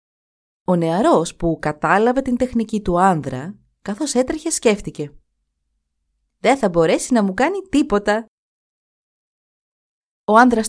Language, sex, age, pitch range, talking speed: Greek, female, 20-39, 150-235 Hz, 110 wpm